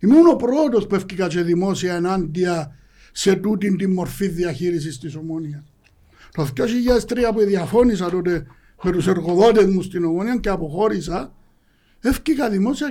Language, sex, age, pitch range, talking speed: Greek, male, 60-79, 175-230 Hz, 125 wpm